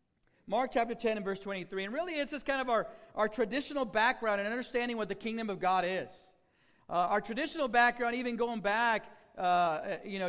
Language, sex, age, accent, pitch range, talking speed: English, male, 50-69, American, 190-240 Hz, 185 wpm